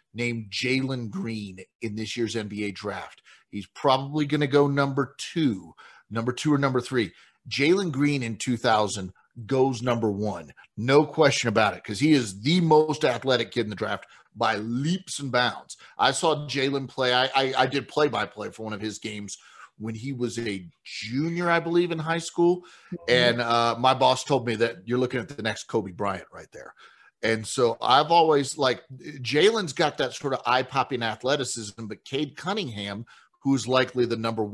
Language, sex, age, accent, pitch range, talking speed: Portuguese, male, 40-59, American, 115-150 Hz, 180 wpm